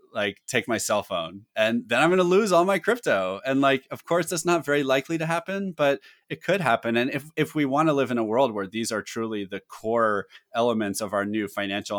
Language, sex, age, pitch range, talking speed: English, male, 30-49, 115-145 Hz, 245 wpm